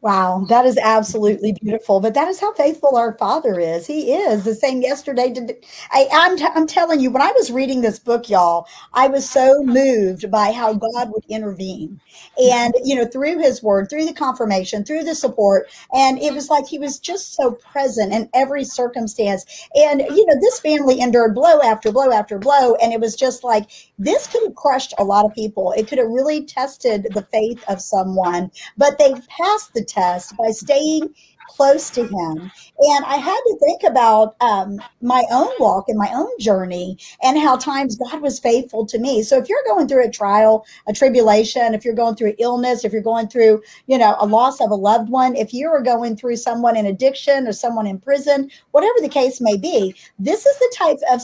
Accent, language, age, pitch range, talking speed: American, English, 50-69, 215-285 Hz, 205 wpm